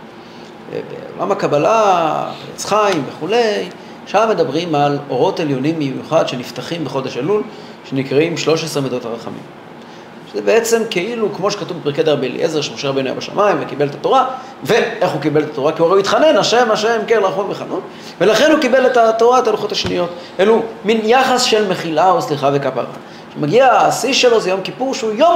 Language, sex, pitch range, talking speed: Hebrew, male, 160-235 Hz, 170 wpm